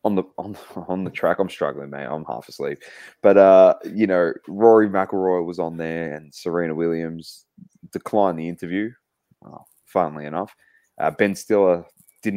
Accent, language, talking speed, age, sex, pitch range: Australian, English, 165 wpm, 20-39, male, 80-100 Hz